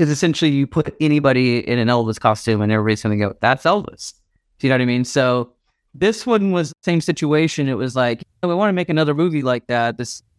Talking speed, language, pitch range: 250 wpm, English, 110-145 Hz